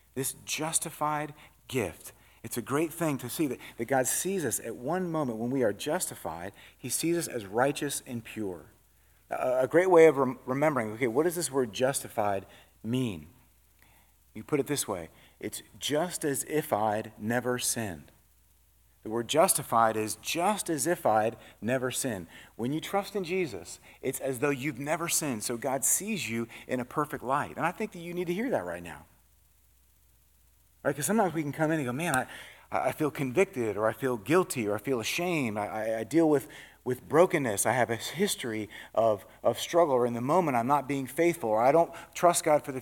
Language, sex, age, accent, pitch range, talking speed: English, male, 40-59, American, 115-165 Hz, 200 wpm